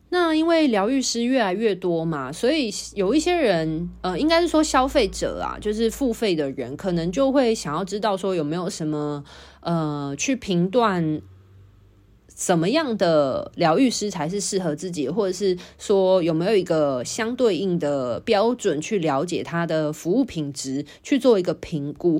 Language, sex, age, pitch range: Chinese, female, 20-39, 160-230 Hz